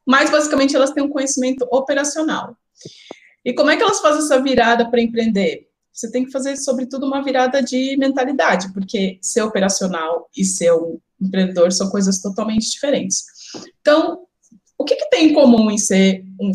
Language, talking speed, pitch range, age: Portuguese, 170 wpm, 195-270 Hz, 20-39